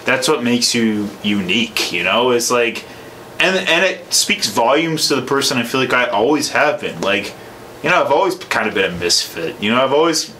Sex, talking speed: male, 220 wpm